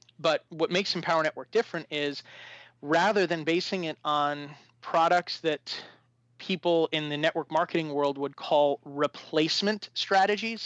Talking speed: 135 wpm